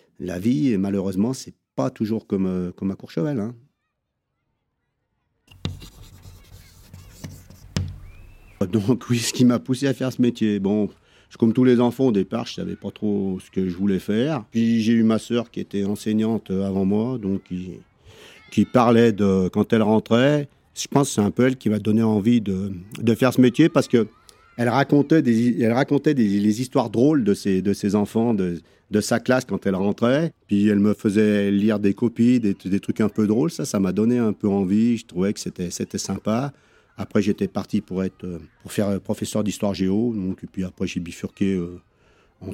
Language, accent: French, French